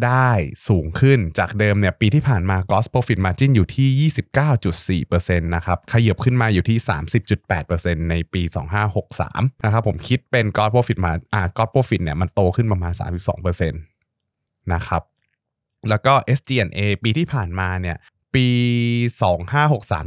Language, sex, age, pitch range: Thai, male, 20-39, 90-115 Hz